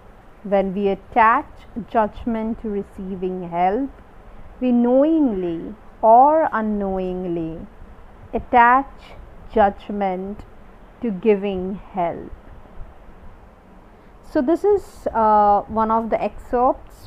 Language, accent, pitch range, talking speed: English, Indian, 195-240 Hz, 85 wpm